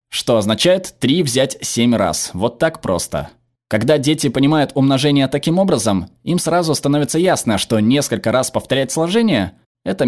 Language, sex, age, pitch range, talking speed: Russian, male, 20-39, 110-145 Hz, 155 wpm